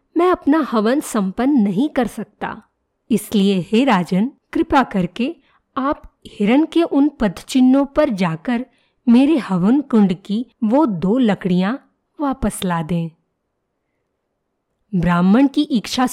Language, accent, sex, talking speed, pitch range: Hindi, native, female, 120 wpm, 190-275 Hz